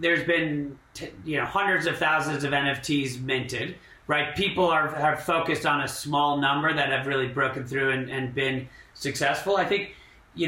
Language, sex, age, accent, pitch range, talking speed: English, male, 40-59, American, 135-155 Hz, 180 wpm